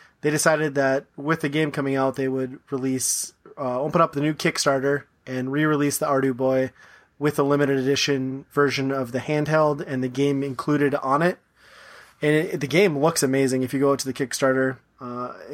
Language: English